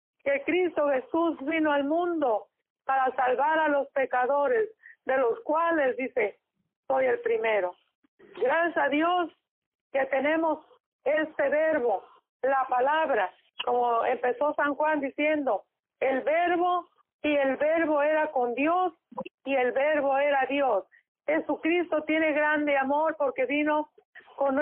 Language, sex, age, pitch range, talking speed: Spanish, female, 40-59, 270-320 Hz, 125 wpm